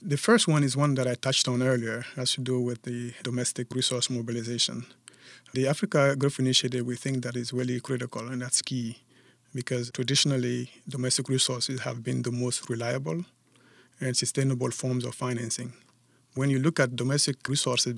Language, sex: English, male